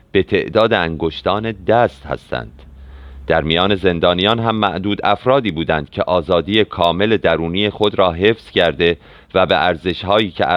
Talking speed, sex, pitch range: 135 wpm, male, 85-105 Hz